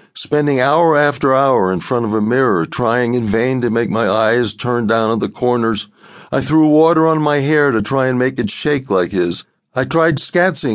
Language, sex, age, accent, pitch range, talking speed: English, male, 60-79, American, 115-150 Hz, 210 wpm